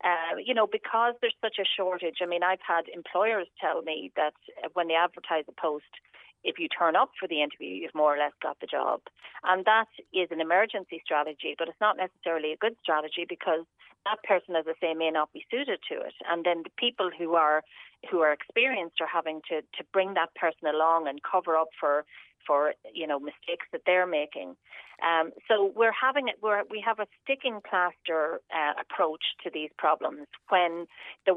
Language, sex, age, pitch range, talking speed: English, female, 40-59, 155-190 Hz, 205 wpm